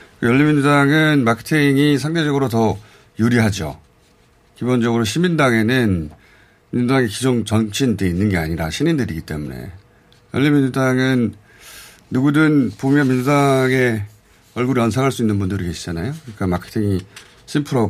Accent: native